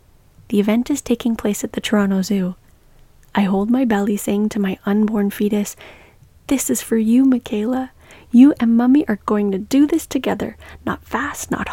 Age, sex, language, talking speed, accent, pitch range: 30-49, female, English, 180 wpm, American, 190-240 Hz